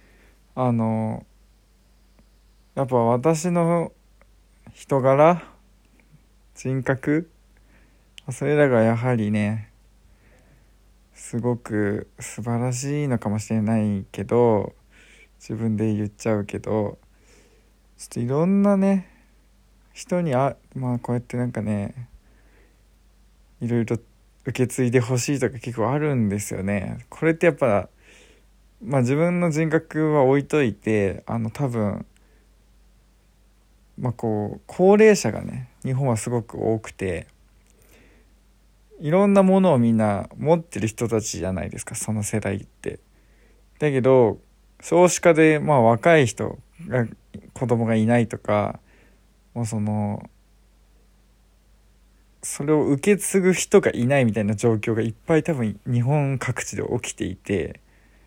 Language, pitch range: Japanese, 105-145 Hz